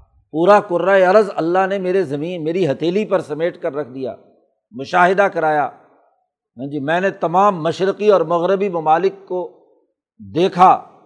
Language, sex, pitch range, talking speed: Urdu, male, 160-205 Hz, 135 wpm